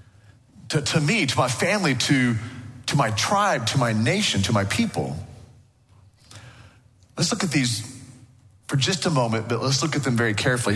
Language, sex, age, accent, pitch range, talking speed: English, male, 40-59, American, 110-135 Hz, 175 wpm